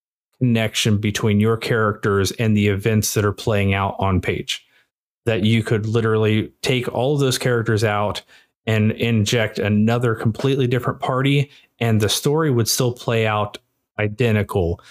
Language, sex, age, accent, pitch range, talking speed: English, male, 30-49, American, 105-120 Hz, 145 wpm